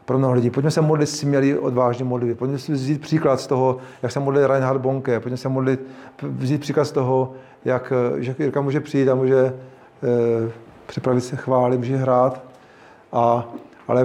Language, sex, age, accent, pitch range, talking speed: Czech, male, 40-59, native, 130-145 Hz, 180 wpm